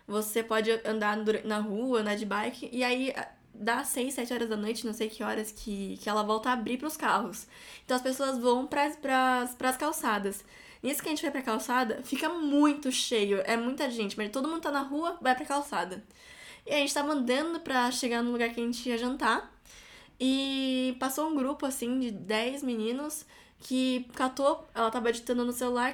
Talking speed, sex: 200 wpm, female